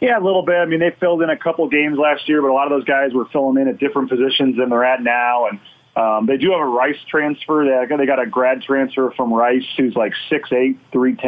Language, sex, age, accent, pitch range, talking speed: English, male, 30-49, American, 125-155 Hz, 255 wpm